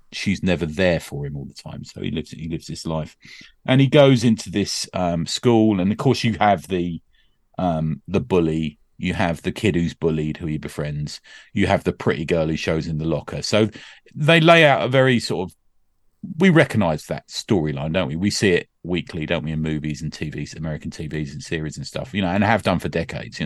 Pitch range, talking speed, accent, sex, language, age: 85-120 Hz, 225 wpm, British, male, English, 40-59